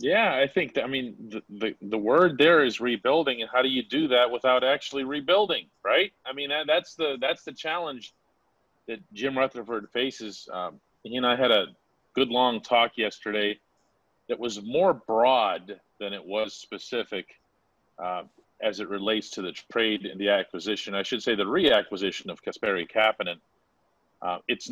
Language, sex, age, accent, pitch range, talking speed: English, male, 40-59, American, 105-135 Hz, 175 wpm